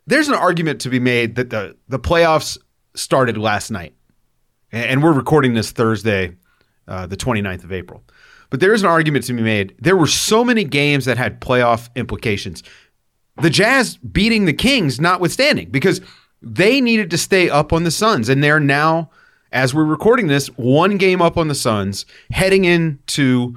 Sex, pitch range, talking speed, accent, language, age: male, 120-165 Hz, 180 wpm, American, English, 30-49